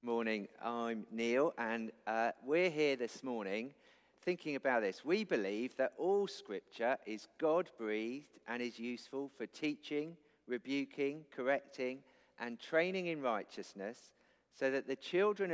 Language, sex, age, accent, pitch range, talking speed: English, male, 50-69, British, 115-150 Hz, 135 wpm